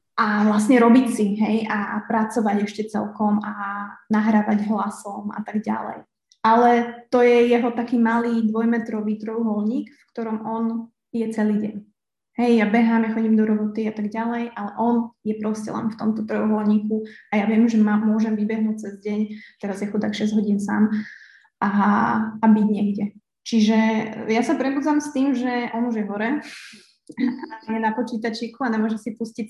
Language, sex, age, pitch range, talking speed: Slovak, female, 20-39, 210-230 Hz, 170 wpm